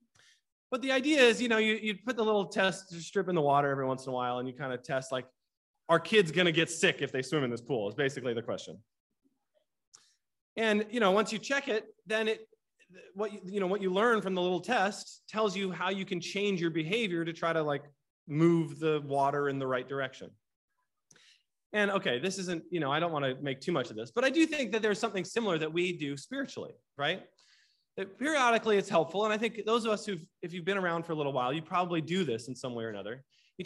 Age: 30-49